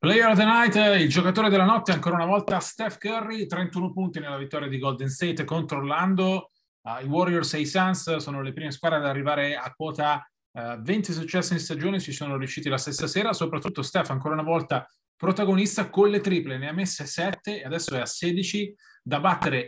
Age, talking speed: 30-49, 200 wpm